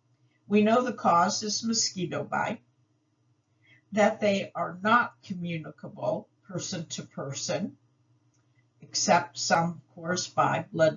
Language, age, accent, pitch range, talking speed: English, 60-79, American, 130-205 Hz, 115 wpm